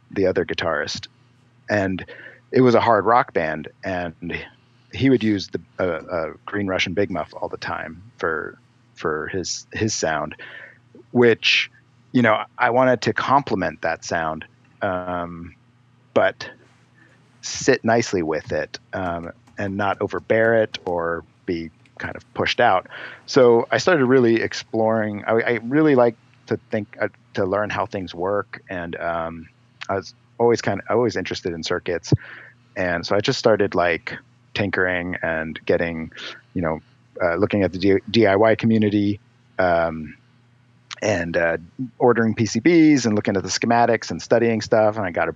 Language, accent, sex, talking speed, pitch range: English, American, male, 155 wpm, 95-120 Hz